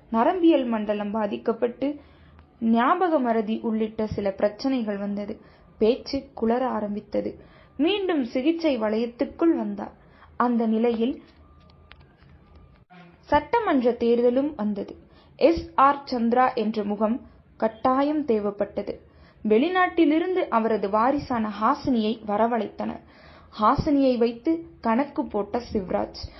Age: 20-39